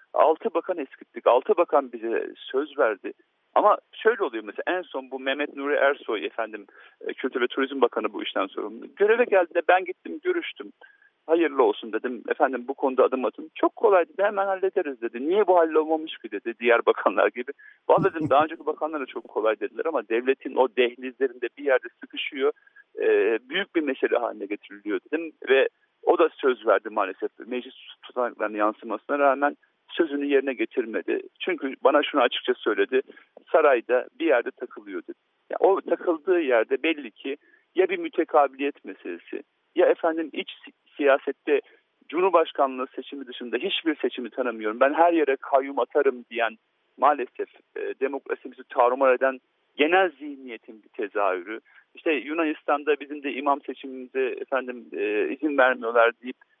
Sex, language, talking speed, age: male, Turkish, 150 wpm, 50-69